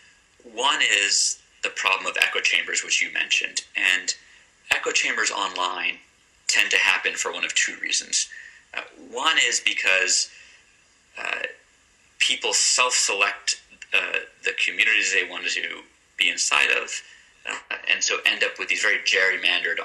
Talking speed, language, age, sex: 140 wpm, English, 30-49, male